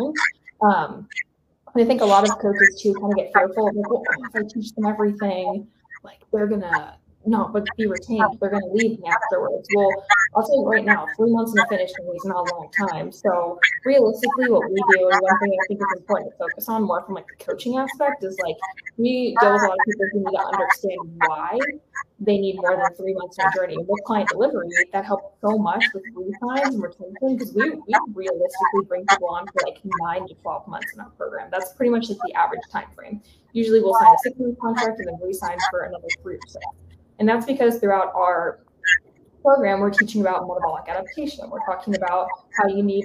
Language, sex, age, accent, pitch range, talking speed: English, female, 10-29, American, 190-230 Hz, 215 wpm